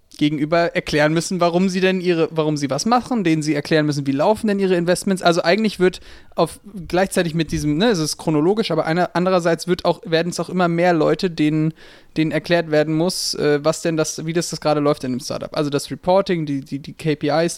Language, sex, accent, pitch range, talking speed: German, male, German, 145-170 Hz, 220 wpm